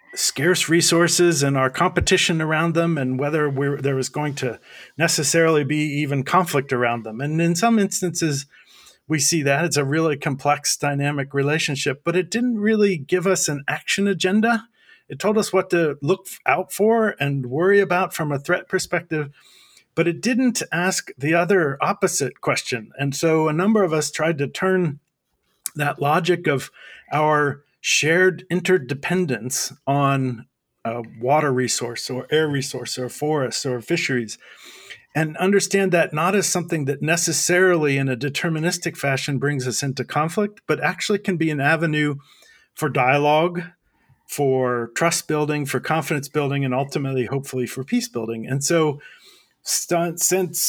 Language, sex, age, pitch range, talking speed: English, male, 40-59, 140-180 Hz, 155 wpm